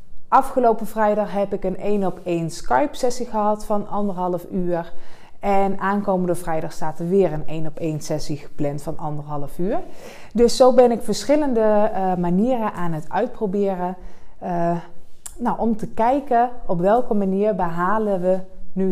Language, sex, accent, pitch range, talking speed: Dutch, female, Dutch, 170-225 Hz, 155 wpm